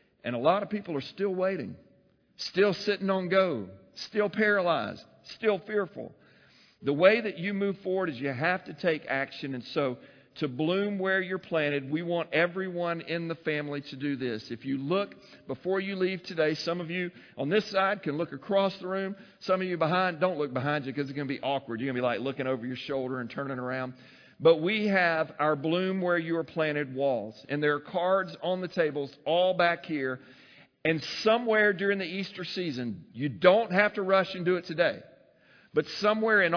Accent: American